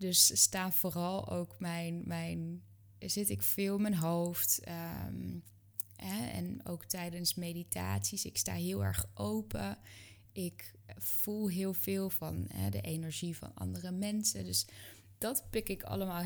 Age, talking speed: 20-39, 145 wpm